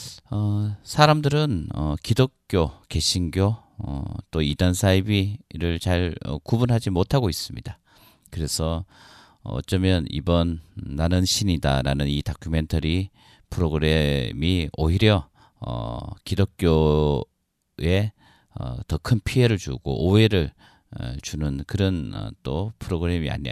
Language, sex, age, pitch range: Korean, male, 40-59, 80-105 Hz